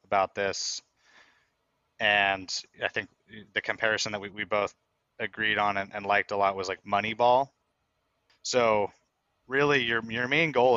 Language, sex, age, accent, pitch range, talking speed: English, male, 20-39, American, 95-115 Hz, 150 wpm